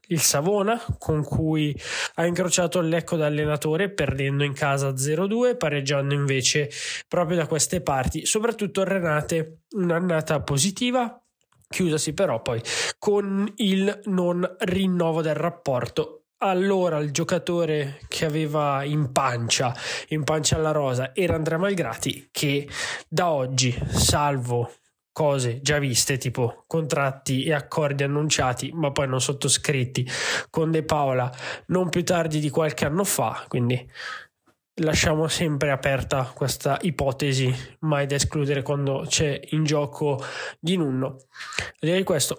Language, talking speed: Italian, 125 wpm